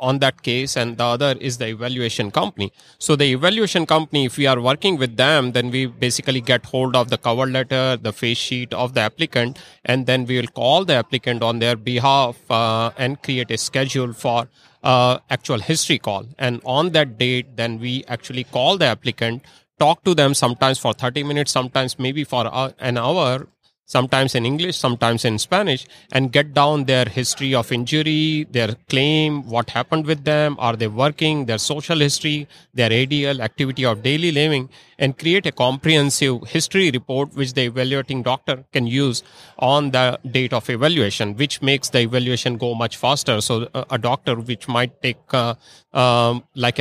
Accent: Indian